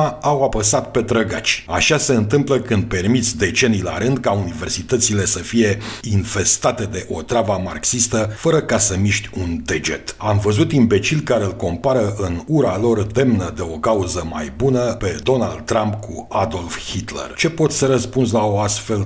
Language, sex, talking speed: Romanian, male, 175 wpm